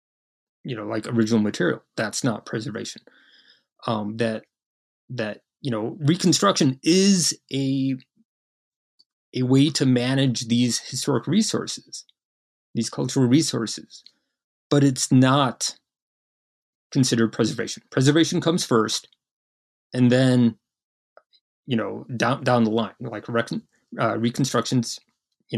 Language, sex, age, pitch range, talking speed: English, male, 30-49, 115-140 Hz, 110 wpm